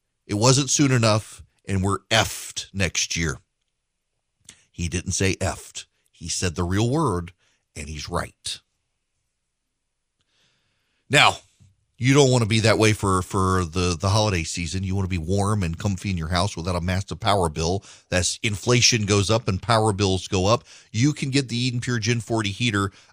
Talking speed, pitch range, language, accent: 175 wpm, 95-135 Hz, English, American